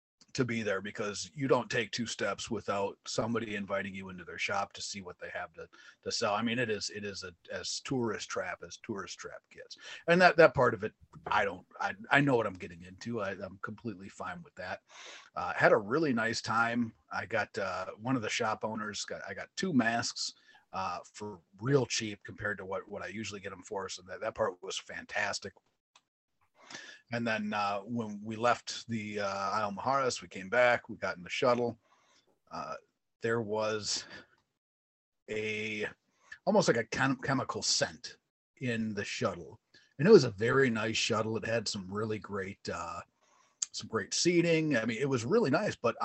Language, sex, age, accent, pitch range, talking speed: English, male, 40-59, American, 105-130 Hz, 200 wpm